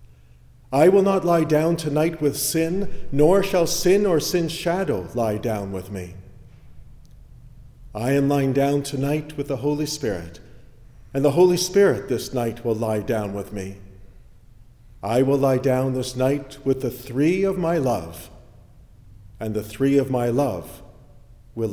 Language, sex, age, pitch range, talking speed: English, male, 50-69, 110-145 Hz, 155 wpm